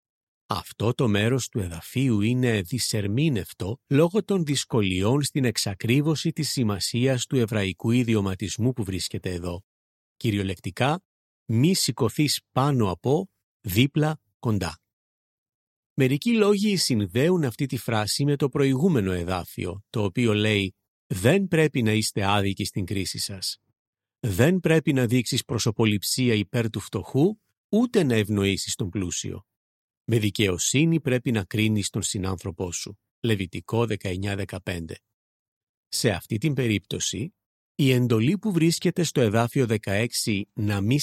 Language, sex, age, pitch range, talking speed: Greek, male, 40-59, 105-140 Hz, 125 wpm